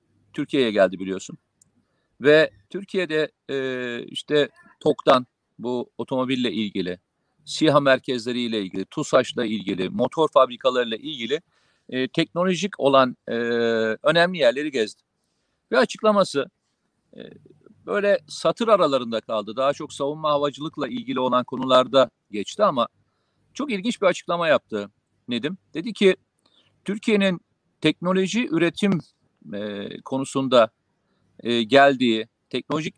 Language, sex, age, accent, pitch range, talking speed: Turkish, male, 50-69, native, 130-175 Hz, 105 wpm